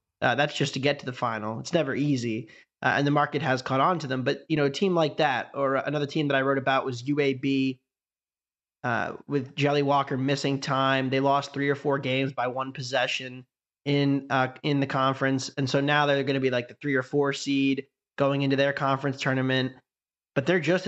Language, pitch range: English, 130-145 Hz